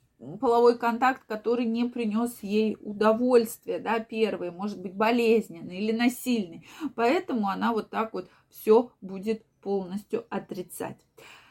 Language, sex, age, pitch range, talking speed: Russian, female, 20-39, 205-255 Hz, 120 wpm